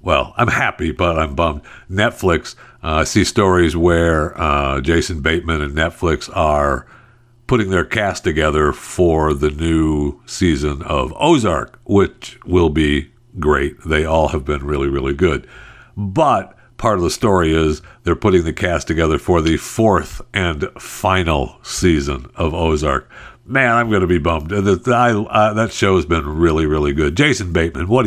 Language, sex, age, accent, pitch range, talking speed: English, male, 60-79, American, 80-100 Hz, 160 wpm